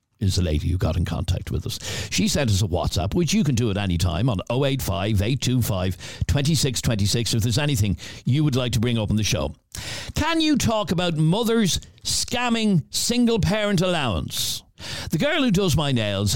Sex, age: male, 60-79